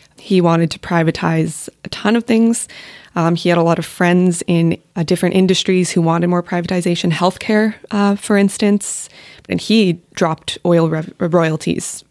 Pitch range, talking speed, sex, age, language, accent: 165-185 Hz, 160 wpm, female, 20-39, English, American